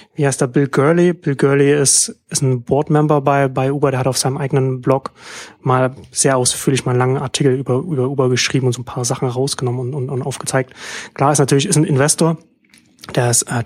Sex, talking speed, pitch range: male, 215 wpm, 130-155 Hz